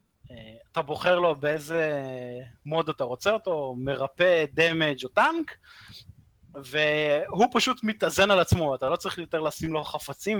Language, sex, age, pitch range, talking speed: Hebrew, male, 30-49, 130-190 Hz, 145 wpm